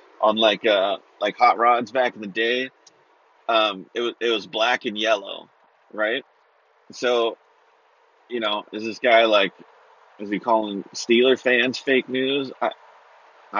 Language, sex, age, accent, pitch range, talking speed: English, male, 30-49, American, 120-175 Hz, 150 wpm